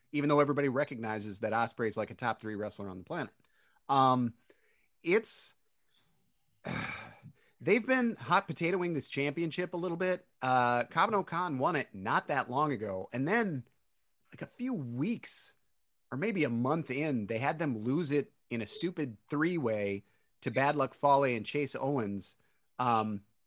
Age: 30-49